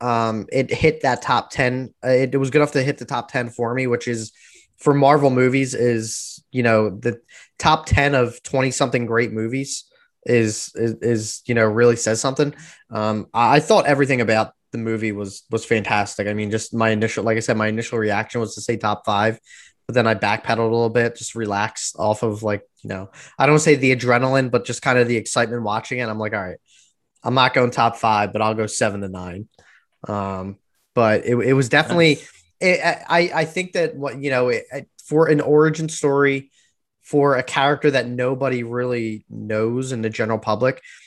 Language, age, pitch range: English, 10-29, 110-130 Hz